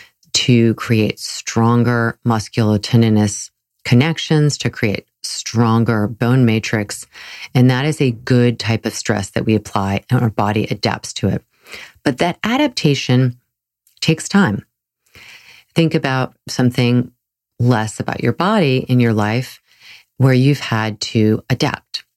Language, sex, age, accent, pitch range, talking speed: English, female, 30-49, American, 115-140 Hz, 125 wpm